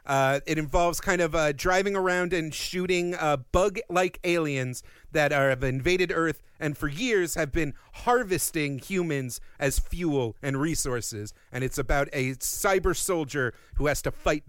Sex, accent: male, American